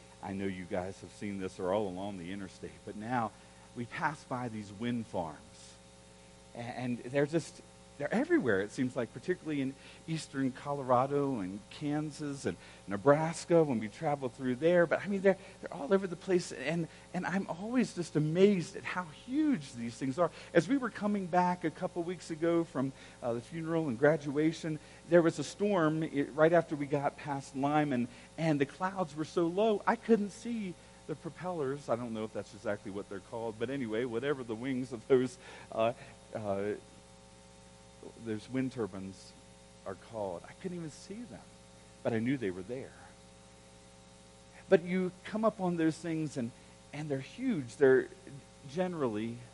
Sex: male